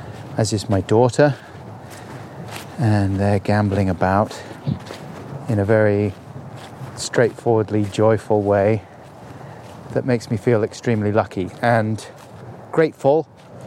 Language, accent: English, British